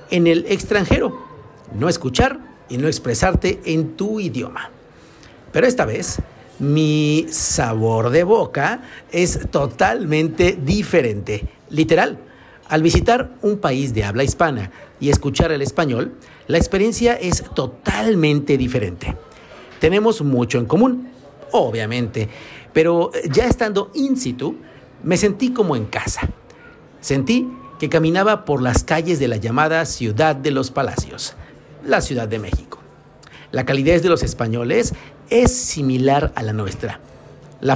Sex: male